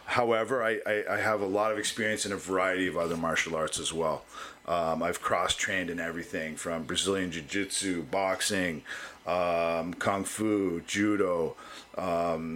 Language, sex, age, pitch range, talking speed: English, male, 40-59, 95-115 Hz, 155 wpm